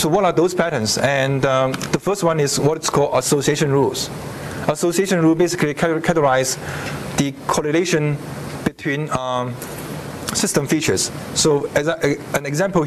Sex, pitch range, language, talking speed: male, 135-165 Hz, English, 145 wpm